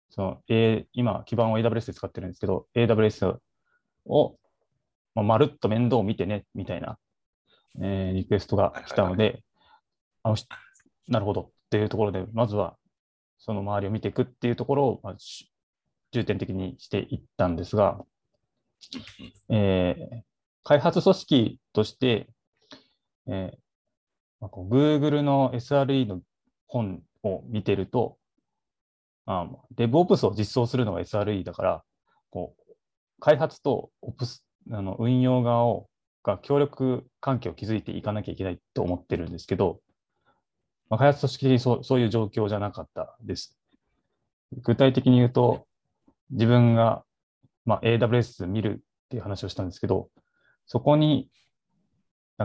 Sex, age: male, 20-39